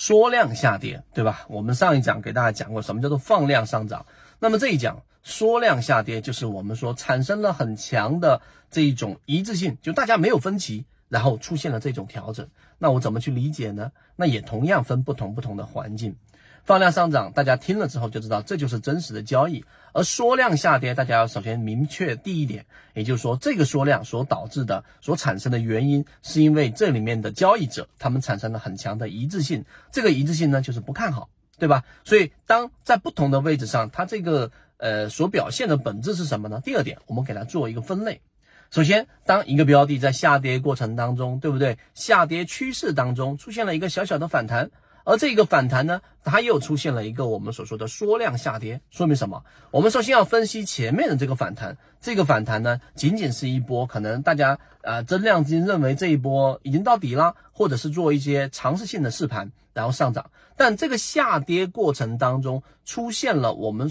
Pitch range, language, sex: 115-160 Hz, Chinese, male